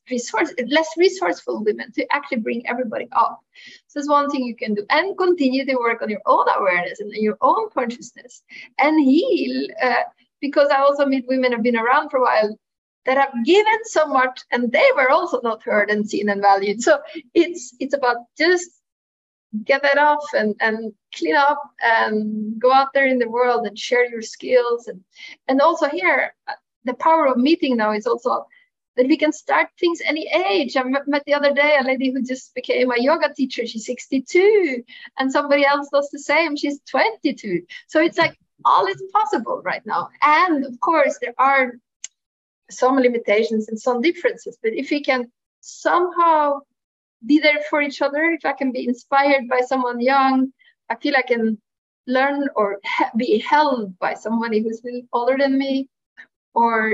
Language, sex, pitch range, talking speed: English, female, 245-305 Hz, 180 wpm